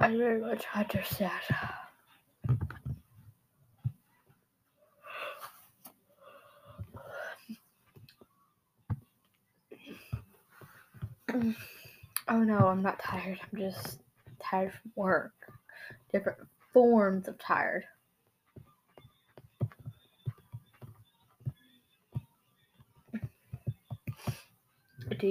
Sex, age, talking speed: female, 20-39, 45 wpm